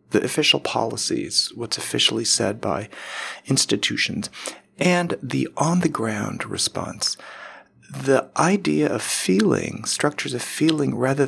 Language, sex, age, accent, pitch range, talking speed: English, male, 40-59, American, 115-165 Hz, 110 wpm